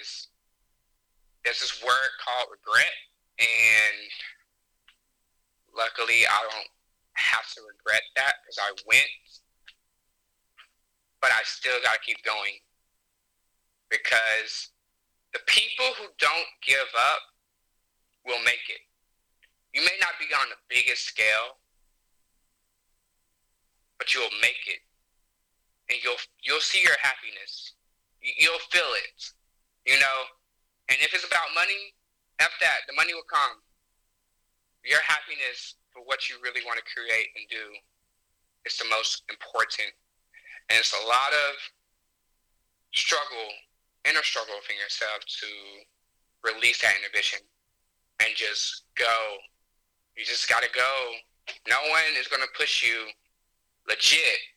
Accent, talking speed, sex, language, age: American, 120 wpm, male, English, 20-39